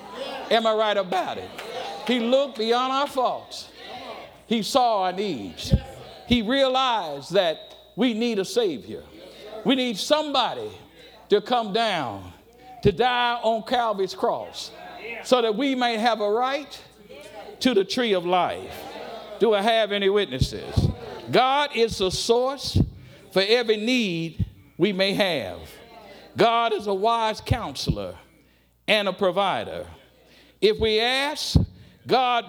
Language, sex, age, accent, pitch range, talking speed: English, male, 60-79, American, 205-260 Hz, 130 wpm